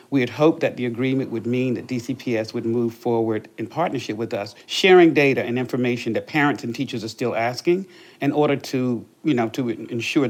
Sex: male